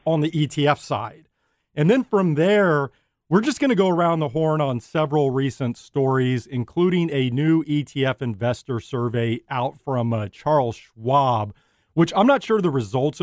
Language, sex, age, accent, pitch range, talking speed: English, male, 40-59, American, 125-165 Hz, 165 wpm